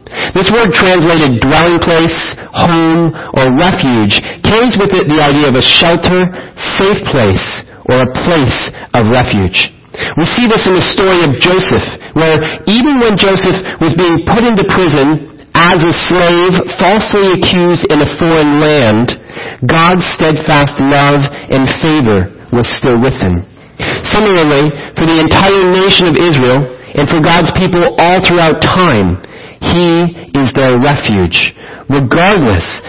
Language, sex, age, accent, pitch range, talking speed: English, male, 40-59, American, 130-175 Hz, 140 wpm